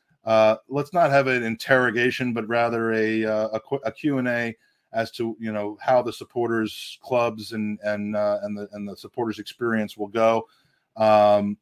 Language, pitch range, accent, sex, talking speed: English, 105-120 Hz, American, male, 180 wpm